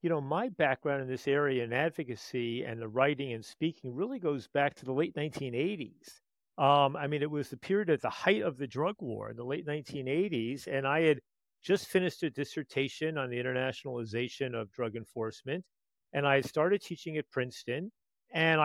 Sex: male